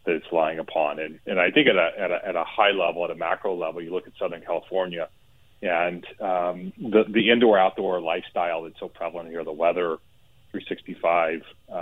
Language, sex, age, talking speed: English, male, 30-49, 200 wpm